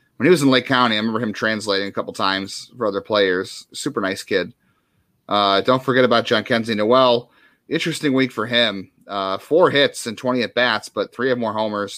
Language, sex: English, male